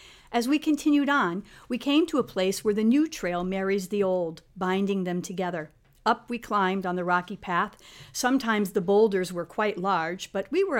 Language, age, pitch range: English, 50-69, 180-230 Hz